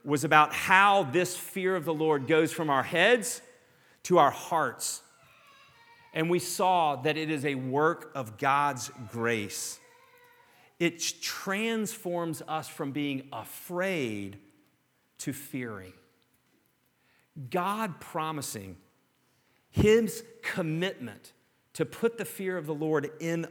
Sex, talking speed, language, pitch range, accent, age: male, 115 wpm, English, 125-165 Hz, American, 40-59